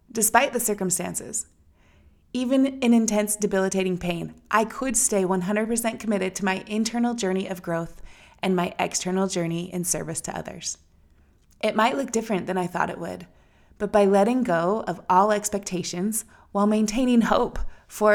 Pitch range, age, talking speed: 180-220 Hz, 20-39, 155 wpm